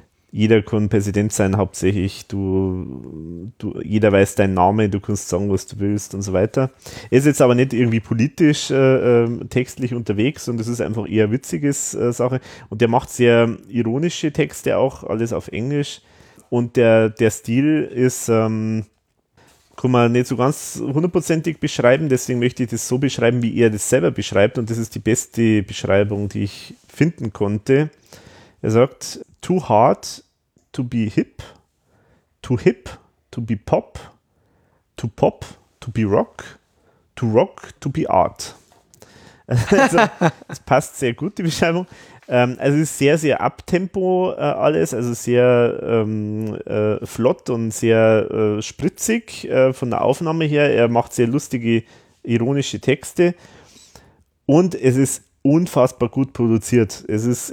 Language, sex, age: German, male, 30-49